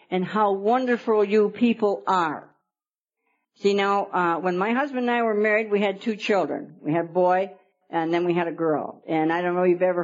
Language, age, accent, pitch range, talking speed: English, 60-79, American, 180-255 Hz, 220 wpm